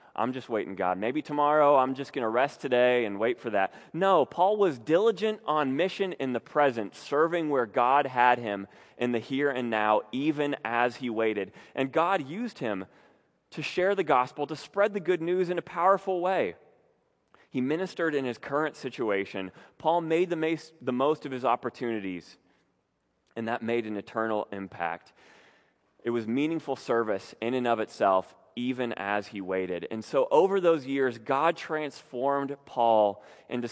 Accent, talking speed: American, 170 wpm